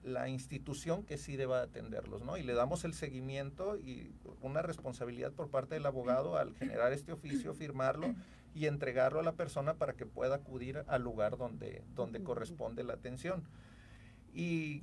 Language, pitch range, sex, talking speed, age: Spanish, 125-150 Hz, male, 165 wpm, 40-59